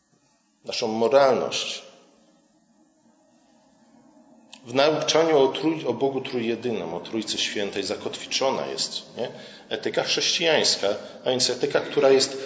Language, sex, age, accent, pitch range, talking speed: Polish, male, 40-59, native, 125-180 Hz, 105 wpm